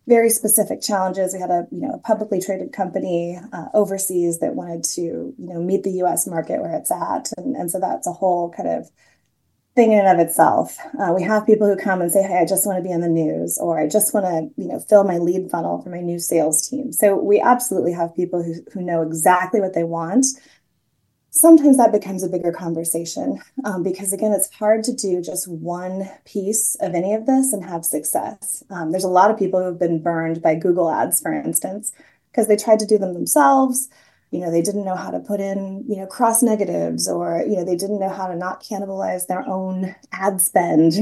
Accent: American